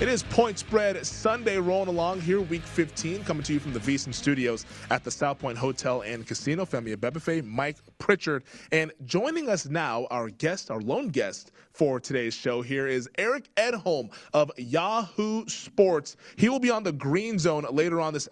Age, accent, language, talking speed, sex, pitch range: 20-39, American, English, 185 wpm, male, 140-180 Hz